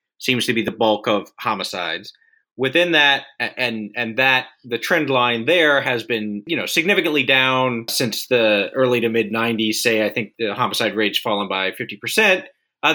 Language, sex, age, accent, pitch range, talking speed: English, male, 30-49, American, 110-135 Hz, 180 wpm